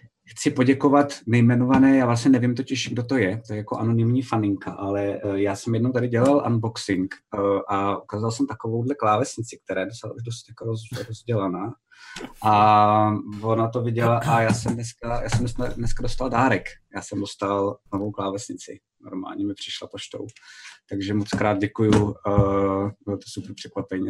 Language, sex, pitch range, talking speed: Czech, male, 100-125 Hz, 150 wpm